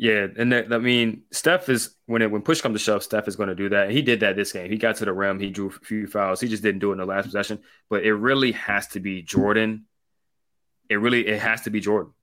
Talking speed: 295 wpm